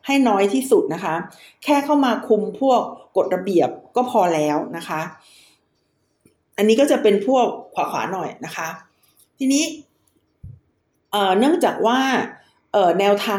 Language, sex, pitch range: Thai, female, 180-235 Hz